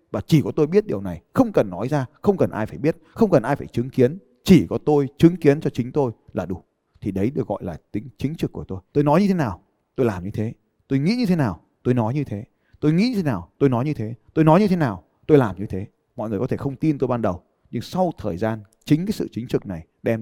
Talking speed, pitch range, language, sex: 290 wpm, 110-165 Hz, Vietnamese, male